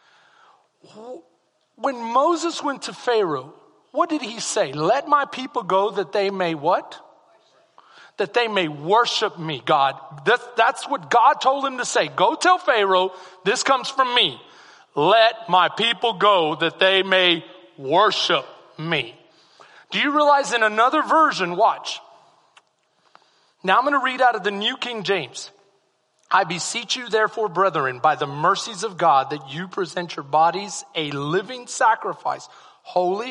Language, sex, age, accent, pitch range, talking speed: English, male, 40-59, American, 170-245 Hz, 150 wpm